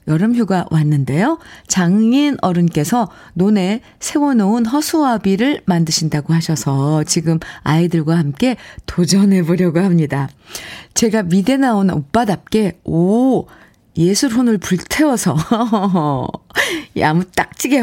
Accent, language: native, Korean